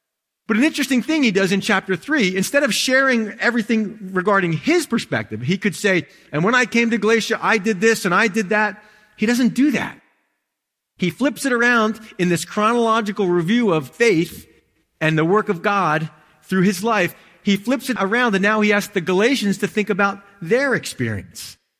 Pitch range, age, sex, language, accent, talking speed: 170-225 Hz, 40-59, male, English, American, 190 wpm